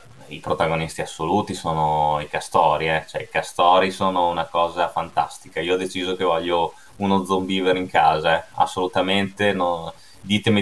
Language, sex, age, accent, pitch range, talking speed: Italian, male, 20-39, native, 90-115 Hz, 155 wpm